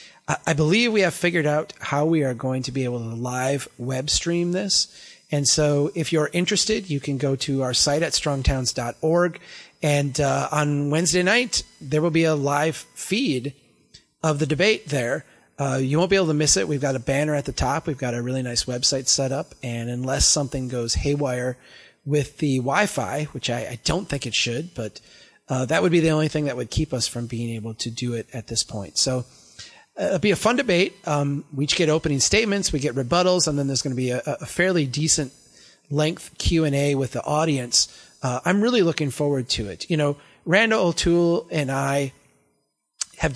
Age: 30-49